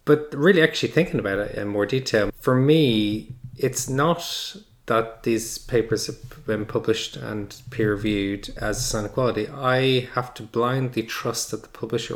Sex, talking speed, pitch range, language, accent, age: male, 170 wpm, 105-115 Hz, English, Irish, 20-39